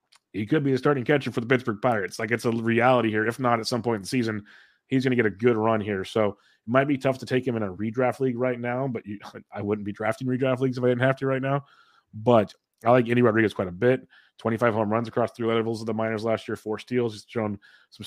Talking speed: 280 wpm